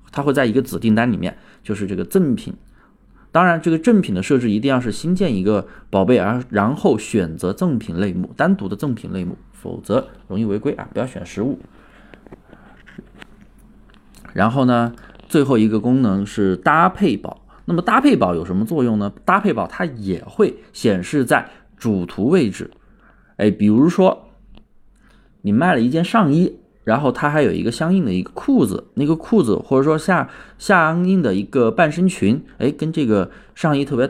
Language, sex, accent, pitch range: Chinese, male, native, 110-170 Hz